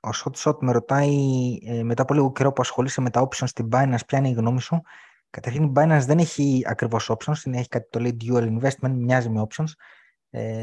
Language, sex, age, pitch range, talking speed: Greek, male, 20-39, 110-135 Hz, 215 wpm